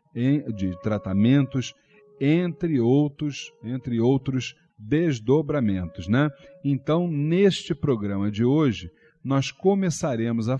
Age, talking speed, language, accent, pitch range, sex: 40-59, 85 wpm, Portuguese, Brazilian, 115-155 Hz, male